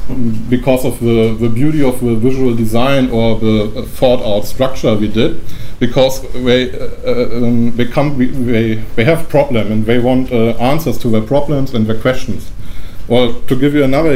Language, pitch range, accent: German, 115-140 Hz, German